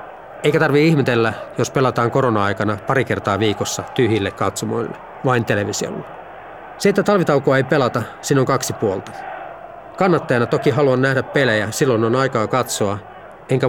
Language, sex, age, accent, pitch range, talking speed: Finnish, male, 40-59, native, 110-150 Hz, 140 wpm